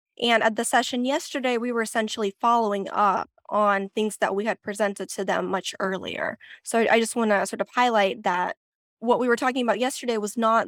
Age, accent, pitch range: 10-29, American, 200-235 Hz